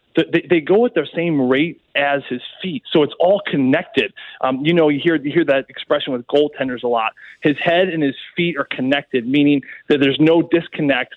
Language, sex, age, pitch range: English, male, 20-39, 140-170 Hz